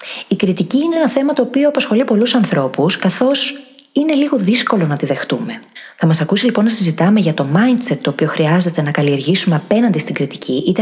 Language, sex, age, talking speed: Greek, female, 20-39, 195 wpm